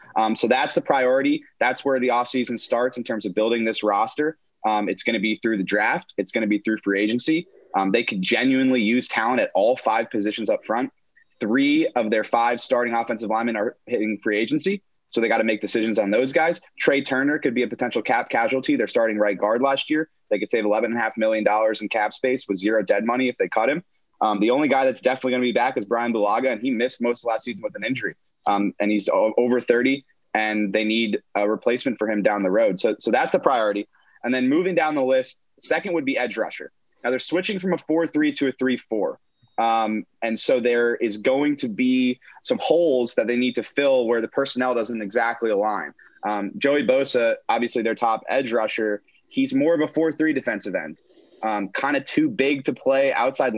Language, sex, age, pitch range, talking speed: English, male, 20-39, 110-145 Hz, 225 wpm